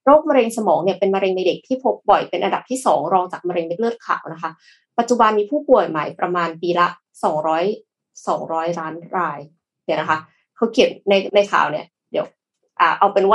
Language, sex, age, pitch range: Thai, female, 20-39, 180-250 Hz